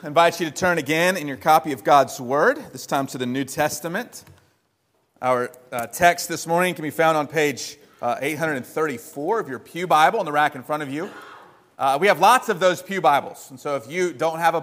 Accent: American